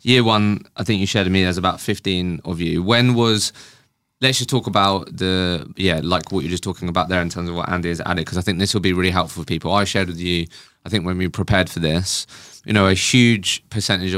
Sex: male